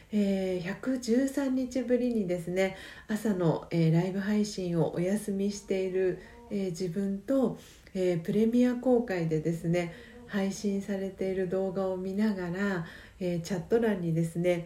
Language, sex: Japanese, female